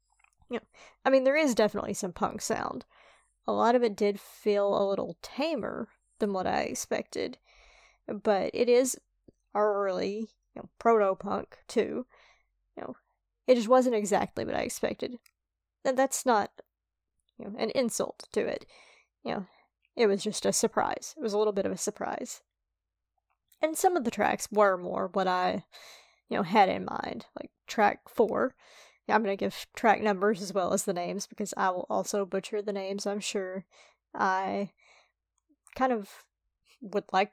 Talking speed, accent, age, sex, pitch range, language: 170 wpm, American, 20-39, female, 195-240 Hz, English